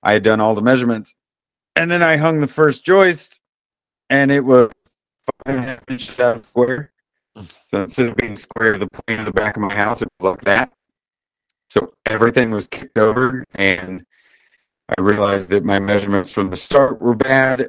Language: English